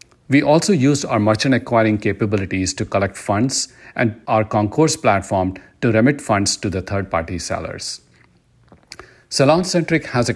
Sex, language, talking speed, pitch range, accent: male, English, 145 wpm, 95-120 Hz, Indian